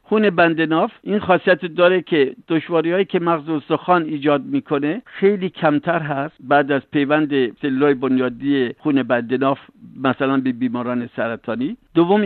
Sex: male